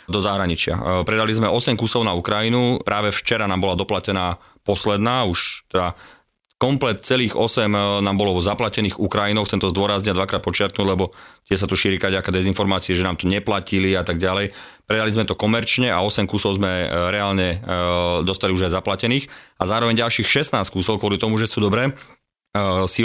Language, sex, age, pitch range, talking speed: Slovak, male, 30-49, 95-110 Hz, 170 wpm